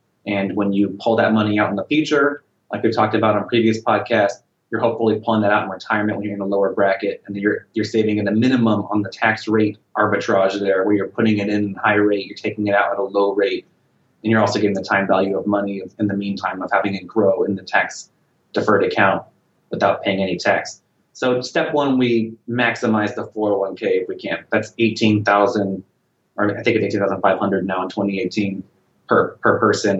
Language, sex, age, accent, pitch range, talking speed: English, male, 30-49, American, 100-120 Hz, 210 wpm